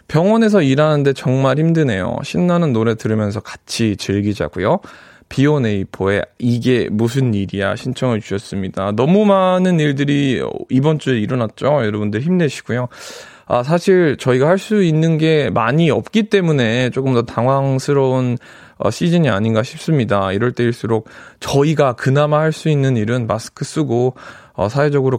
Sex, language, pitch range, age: male, Korean, 110-165 Hz, 20-39